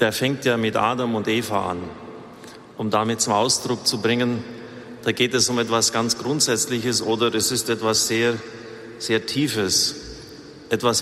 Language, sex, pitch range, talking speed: German, male, 110-125 Hz, 160 wpm